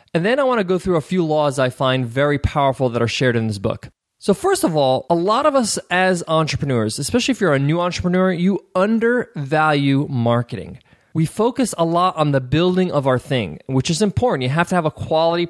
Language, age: English, 20-39